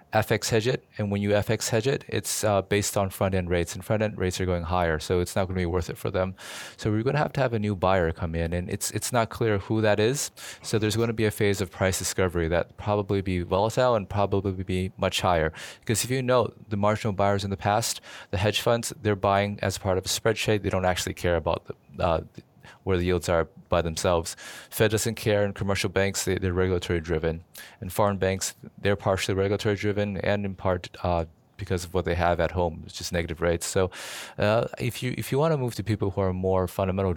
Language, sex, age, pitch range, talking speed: English, male, 20-39, 90-110 Hz, 245 wpm